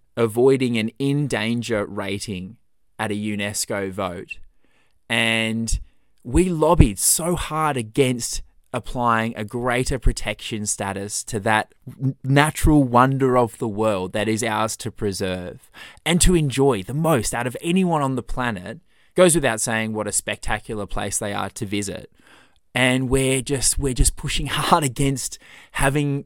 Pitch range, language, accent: 105-135 Hz, English, Australian